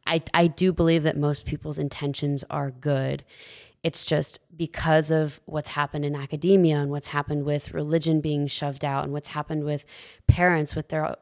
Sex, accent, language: female, American, English